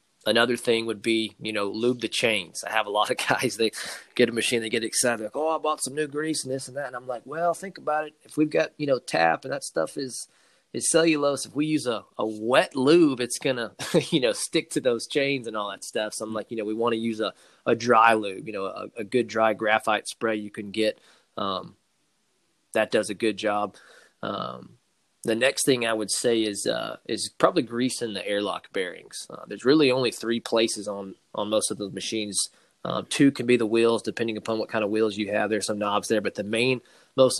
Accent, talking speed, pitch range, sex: American, 240 wpm, 105-130 Hz, male